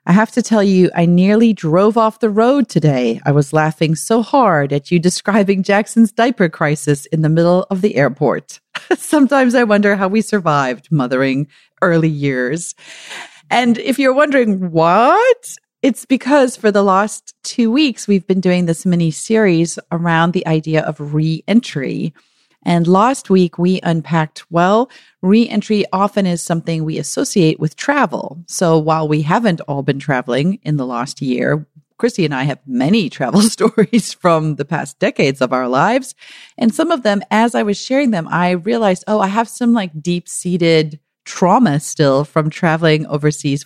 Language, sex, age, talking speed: English, female, 40-59, 170 wpm